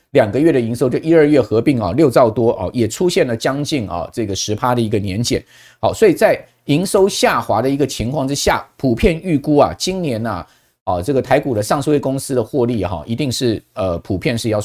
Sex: male